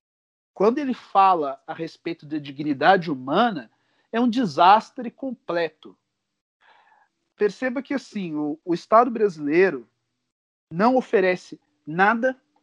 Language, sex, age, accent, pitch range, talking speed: Portuguese, male, 40-59, Brazilian, 155-225 Hz, 105 wpm